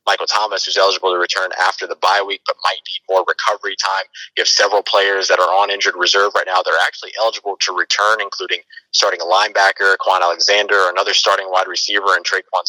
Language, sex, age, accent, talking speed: English, male, 30-49, American, 220 wpm